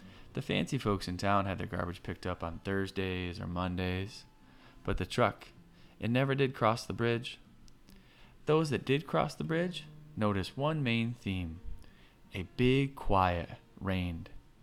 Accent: American